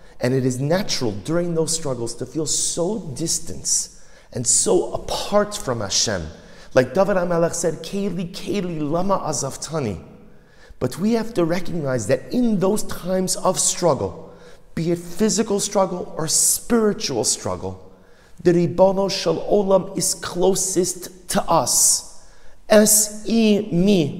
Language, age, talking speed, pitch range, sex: English, 40-59, 125 wpm, 115-190 Hz, male